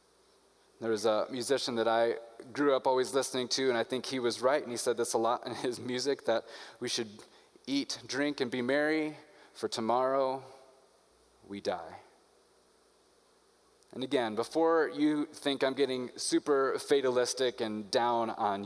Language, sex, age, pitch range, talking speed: English, male, 20-39, 120-155 Hz, 160 wpm